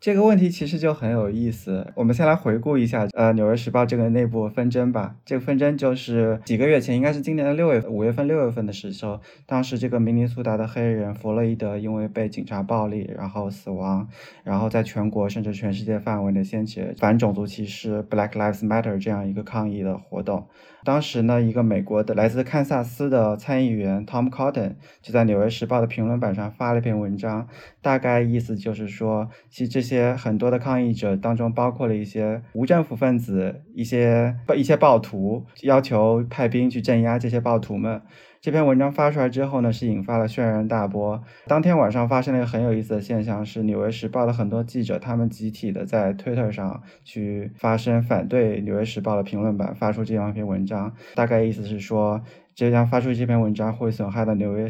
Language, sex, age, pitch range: Chinese, male, 20-39, 105-125 Hz